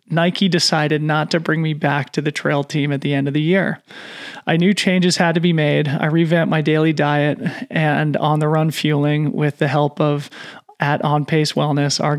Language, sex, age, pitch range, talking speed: English, male, 30-49, 150-170 Hz, 210 wpm